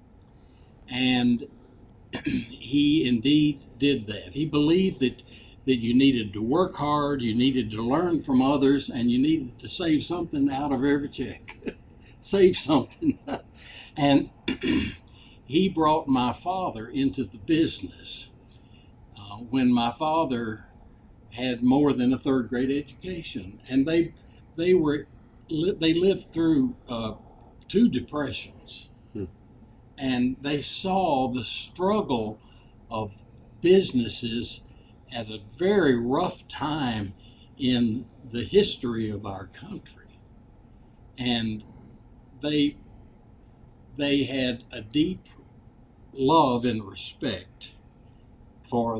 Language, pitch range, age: English, 115-145 Hz, 60-79